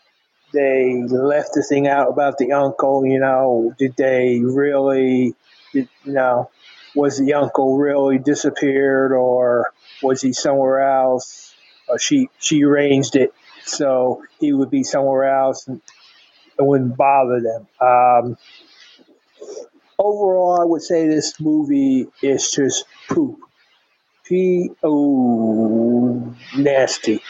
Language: English